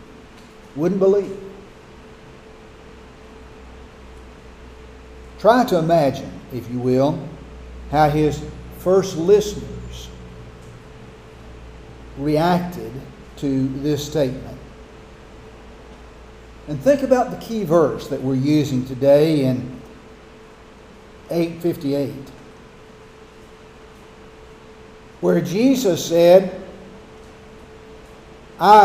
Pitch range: 135-200 Hz